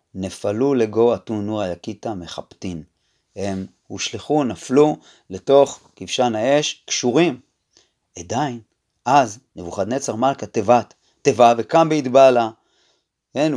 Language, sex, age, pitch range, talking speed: Hebrew, male, 30-49, 120-165 Hz, 95 wpm